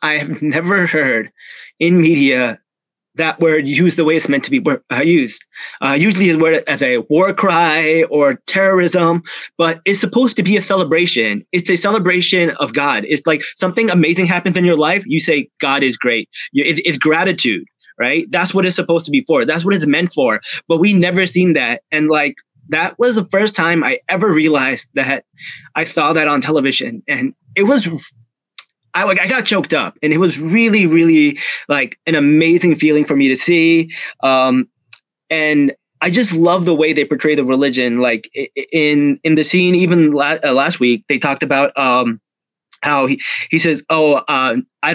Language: English